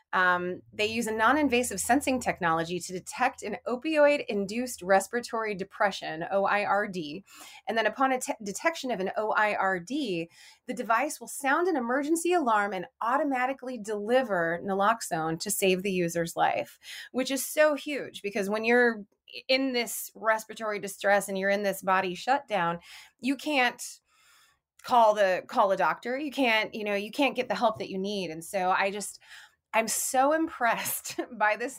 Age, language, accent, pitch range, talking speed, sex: 30-49, English, American, 195-250 Hz, 160 wpm, female